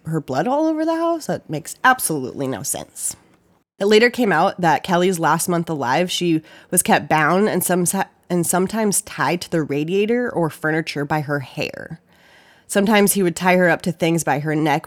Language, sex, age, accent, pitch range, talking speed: English, female, 20-39, American, 155-190 Hz, 195 wpm